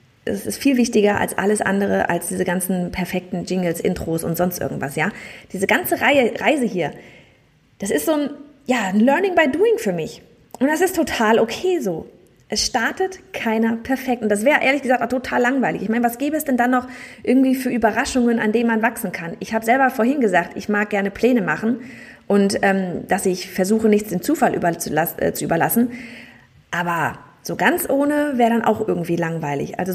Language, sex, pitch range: German, female, 195-255 Hz